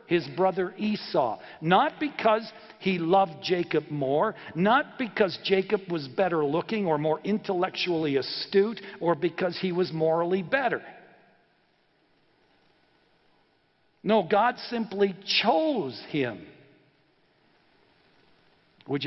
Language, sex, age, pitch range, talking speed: English, male, 60-79, 155-215 Hz, 100 wpm